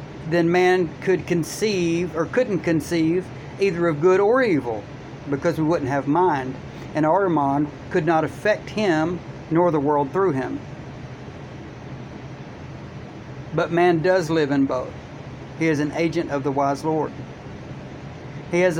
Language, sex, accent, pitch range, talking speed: English, male, American, 145-175 Hz, 140 wpm